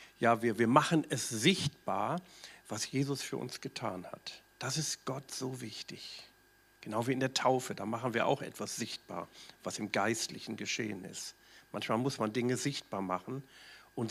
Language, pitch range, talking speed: German, 110-135 Hz, 170 wpm